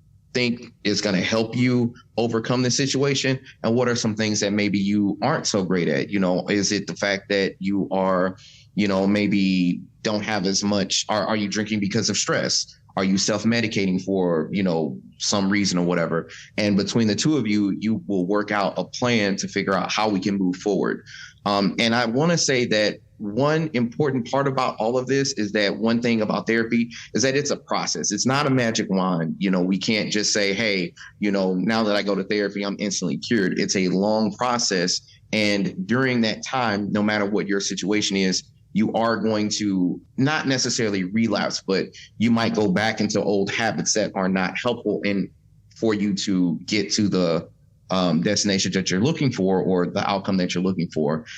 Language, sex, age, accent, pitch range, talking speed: English, male, 30-49, American, 95-120 Hz, 205 wpm